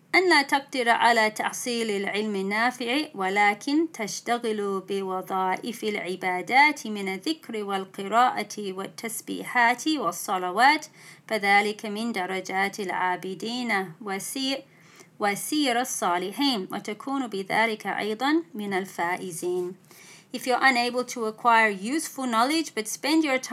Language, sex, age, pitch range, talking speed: English, female, 30-49, 195-245 Hz, 65 wpm